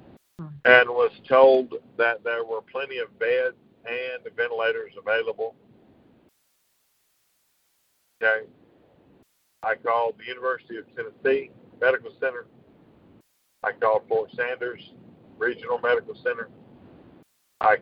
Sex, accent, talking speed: male, American, 100 wpm